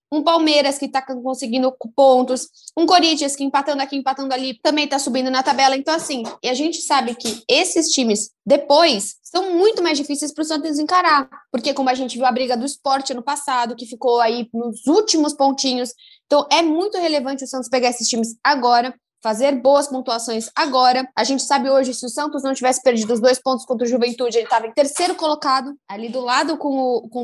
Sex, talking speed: female, 205 wpm